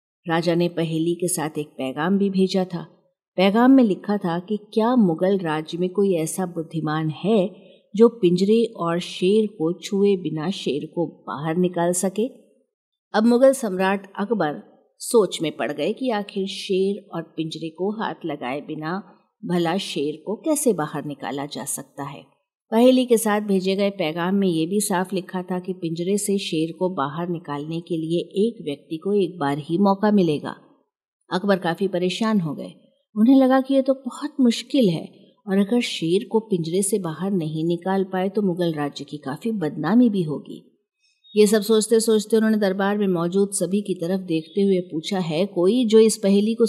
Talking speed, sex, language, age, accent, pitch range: 180 wpm, female, Hindi, 50-69, native, 170-220 Hz